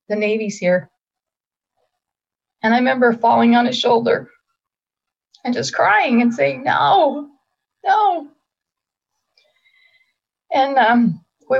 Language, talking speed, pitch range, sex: English, 105 wpm, 205-265 Hz, female